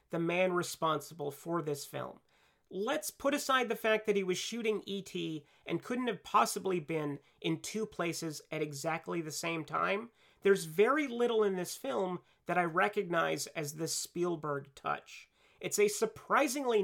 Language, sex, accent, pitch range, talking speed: English, male, American, 160-215 Hz, 160 wpm